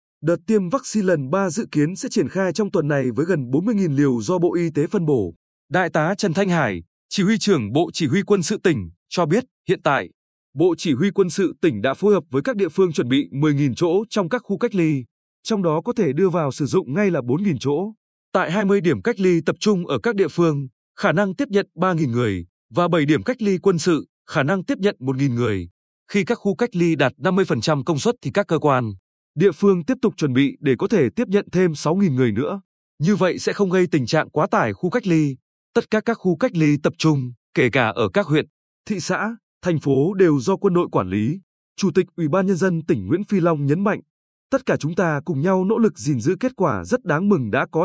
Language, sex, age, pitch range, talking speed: Vietnamese, male, 20-39, 150-200 Hz, 245 wpm